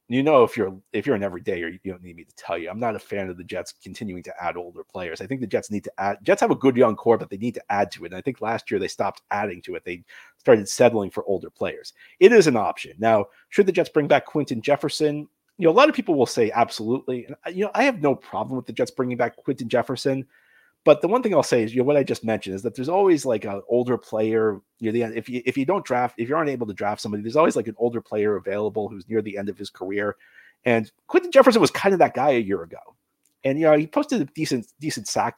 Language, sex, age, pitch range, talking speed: English, male, 30-49, 110-160 Hz, 295 wpm